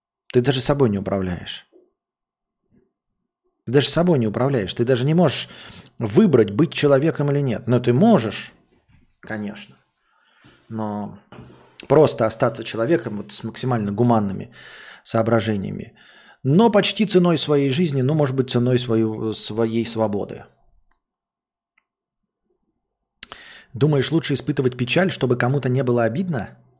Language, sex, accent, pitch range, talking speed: Russian, male, native, 115-160 Hz, 120 wpm